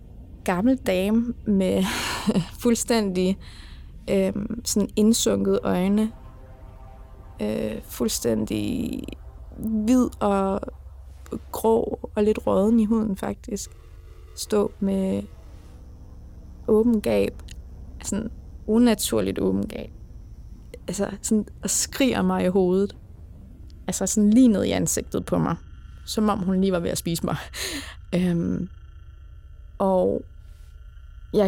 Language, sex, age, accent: Danish, female, 20-39, native